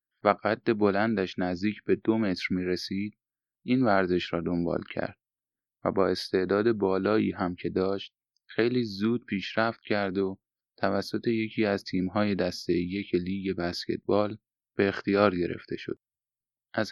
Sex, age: male, 30-49